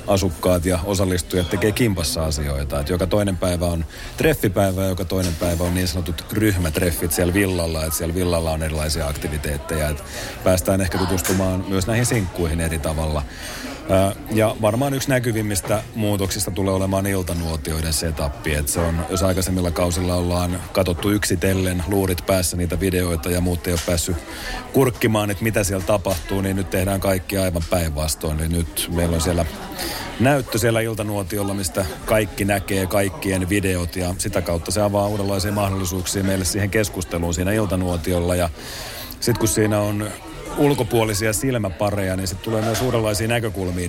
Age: 30-49